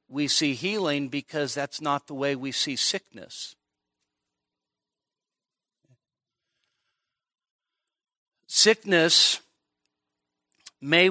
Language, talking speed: English, 70 wpm